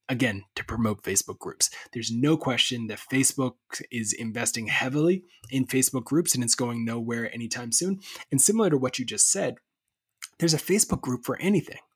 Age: 20-39